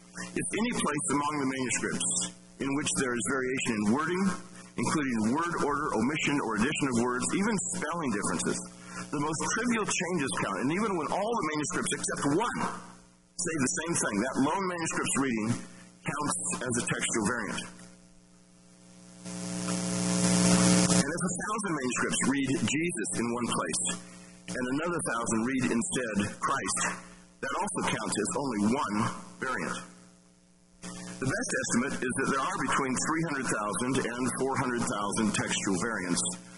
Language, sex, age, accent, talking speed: English, male, 50-69, American, 140 wpm